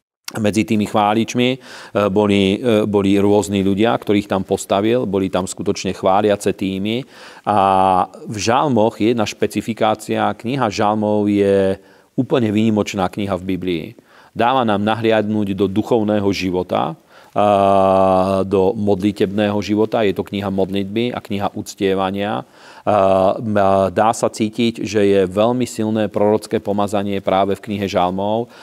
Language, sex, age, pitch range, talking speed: Slovak, male, 40-59, 95-110 Hz, 120 wpm